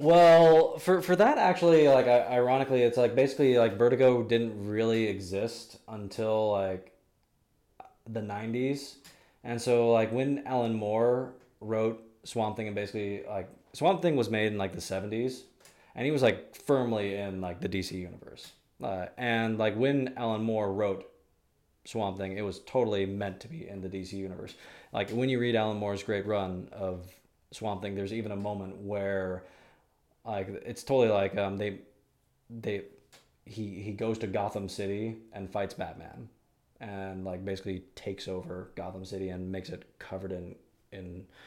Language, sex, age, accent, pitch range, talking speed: English, male, 20-39, American, 95-120 Hz, 165 wpm